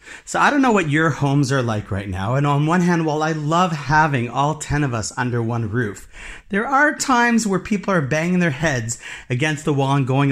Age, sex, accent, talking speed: 30-49, male, American, 235 wpm